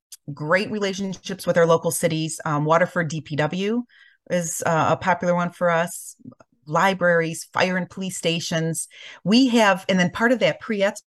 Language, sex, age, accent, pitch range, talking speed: English, female, 40-59, American, 160-205 Hz, 160 wpm